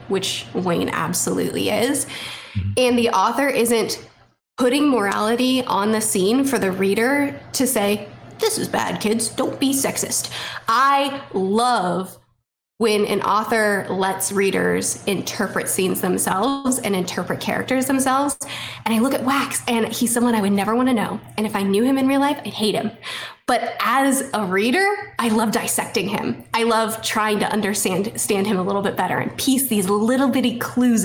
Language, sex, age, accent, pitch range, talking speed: English, female, 10-29, American, 200-255 Hz, 170 wpm